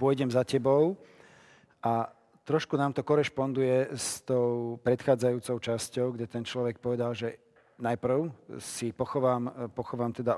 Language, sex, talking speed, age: Slovak, male, 125 wpm, 40-59